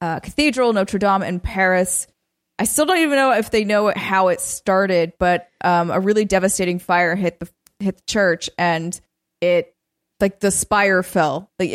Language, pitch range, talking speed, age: English, 180-235 Hz, 180 wpm, 20-39